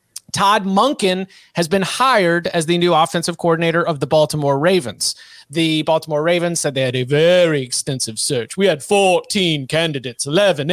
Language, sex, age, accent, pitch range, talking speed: English, male, 30-49, American, 160-200 Hz, 160 wpm